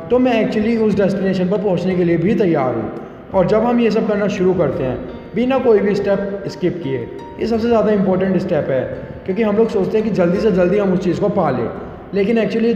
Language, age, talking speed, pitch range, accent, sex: Hindi, 20-39, 235 wpm, 170-210 Hz, native, male